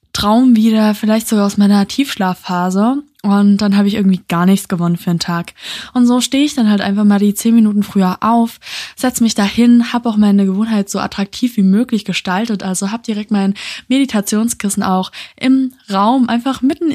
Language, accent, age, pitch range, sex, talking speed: German, German, 20-39, 200-245 Hz, female, 190 wpm